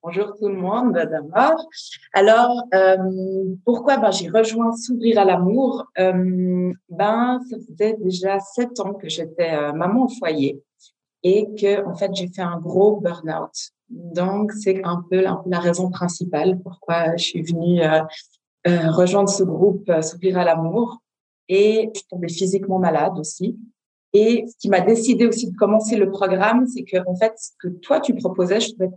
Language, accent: French, French